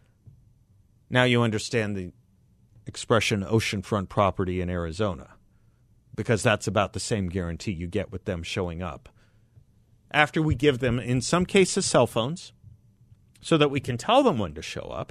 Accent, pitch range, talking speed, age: American, 100-125 Hz, 160 wpm, 50-69